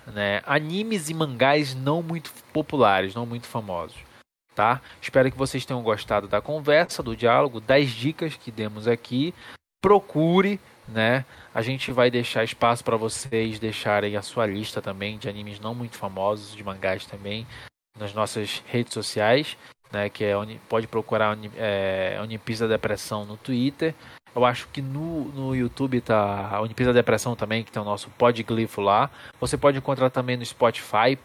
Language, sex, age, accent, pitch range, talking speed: Portuguese, male, 20-39, Brazilian, 105-130 Hz, 160 wpm